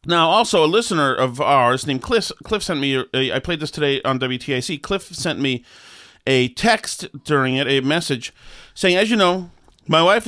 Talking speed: 195 wpm